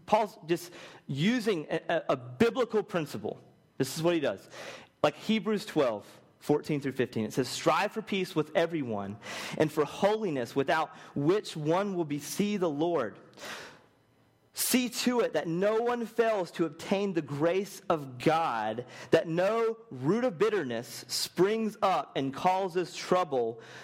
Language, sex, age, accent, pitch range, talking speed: English, male, 30-49, American, 150-215 Hz, 150 wpm